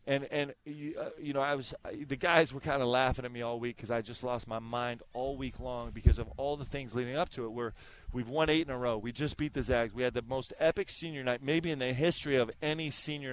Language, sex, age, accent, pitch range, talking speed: English, male, 30-49, American, 120-150 Hz, 280 wpm